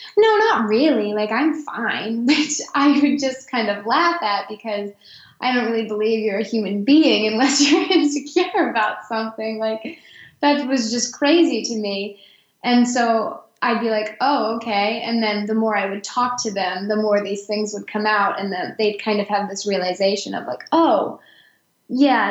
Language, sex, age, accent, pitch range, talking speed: English, female, 10-29, American, 210-260 Hz, 190 wpm